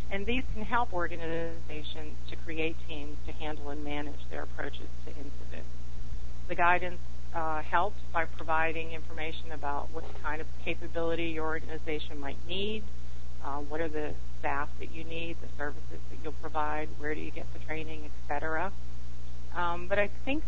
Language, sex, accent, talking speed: English, female, American, 165 wpm